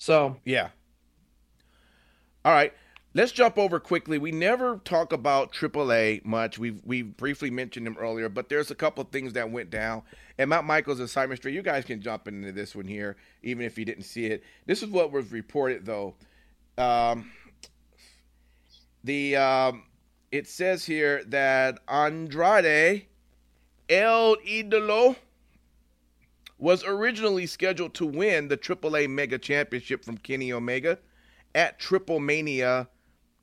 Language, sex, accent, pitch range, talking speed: English, male, American, 105-150 Hz, 145 wpm